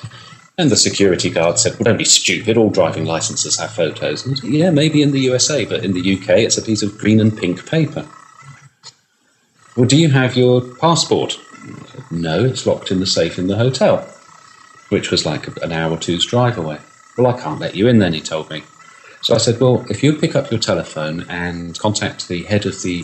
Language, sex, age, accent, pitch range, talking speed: English, male, 40-59, British, 90-125 Hz, 210 wpm